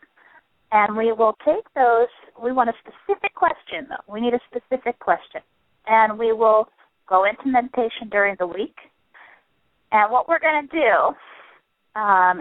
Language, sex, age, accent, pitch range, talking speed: English, female, 30-49, American, 185-250 Hz, 155 wpm